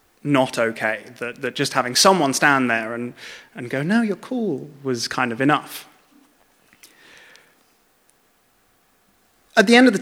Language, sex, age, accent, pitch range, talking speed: English, male, 20-39, British, 125-170 Hz, 130 wpm